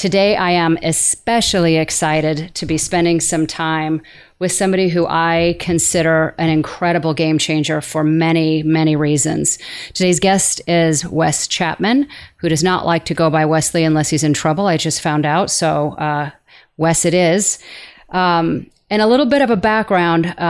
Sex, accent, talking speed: female, American, 165 wpm